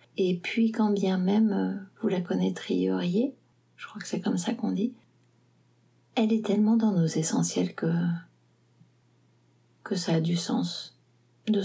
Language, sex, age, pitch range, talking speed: French, female, 40-59, 120-205 Hz, 155 wpm